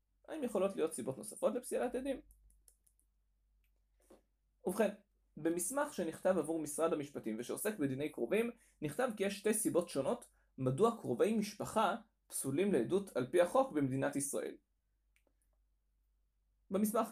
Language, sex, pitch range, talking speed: Hebrew, male, 130-215 Hz, 115 wpm